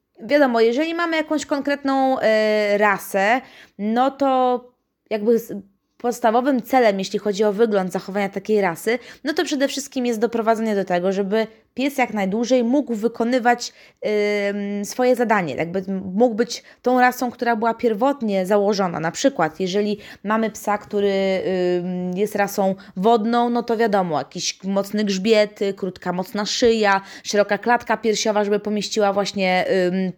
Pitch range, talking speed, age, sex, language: 195-245 Hz, 140 wpm, 20-39, female, Polish